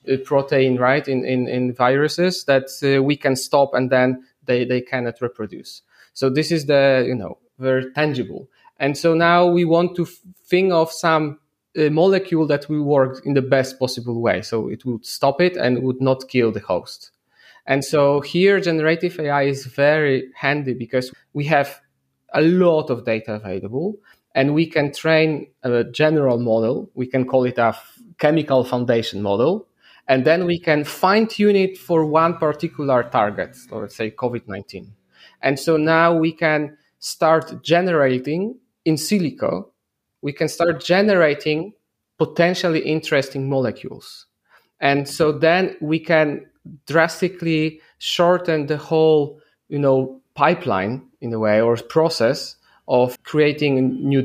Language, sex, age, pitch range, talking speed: English, male, 20-39, 130-160 Hz, 150 wpm